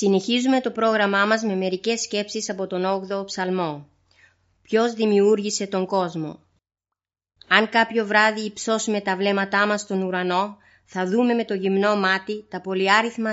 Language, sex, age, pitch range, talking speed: Greek, female, 30-49, 185-220 Hz, 145 wpm